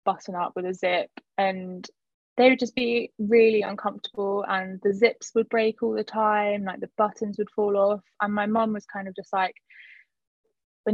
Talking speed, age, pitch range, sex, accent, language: 190 wpm, 20-39, 190-225 Hz, female, British, English